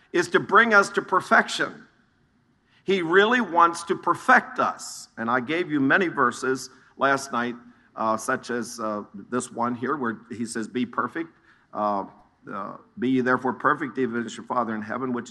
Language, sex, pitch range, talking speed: English, male, 120-160 Hz, 175 wpm